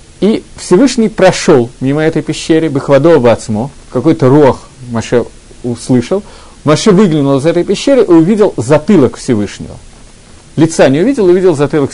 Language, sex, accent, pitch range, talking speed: Russian, male, native, 120-180 Hz, 125 wpm